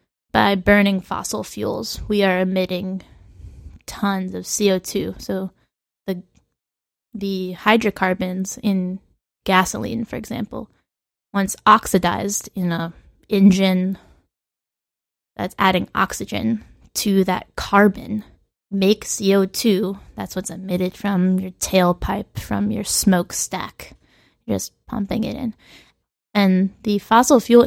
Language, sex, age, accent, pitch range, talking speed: English, female, 20-39, American, 185-215 Hz, 105 wpm